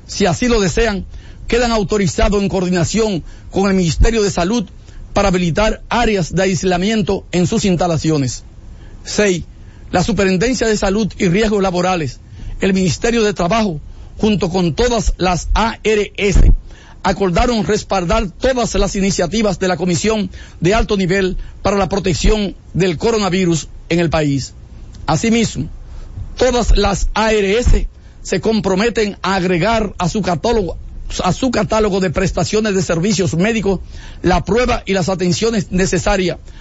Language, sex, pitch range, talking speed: English, male, 180-215 Hz, 135 wpm